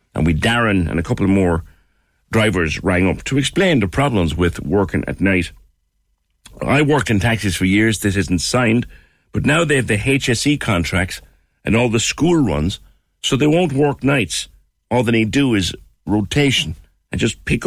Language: English